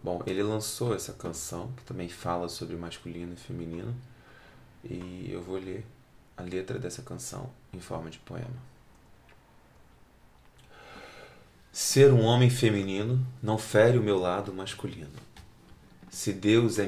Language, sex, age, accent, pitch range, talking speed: Portuguese, male, 20-39, Brazilian, 90-115 Hz, 130 wpm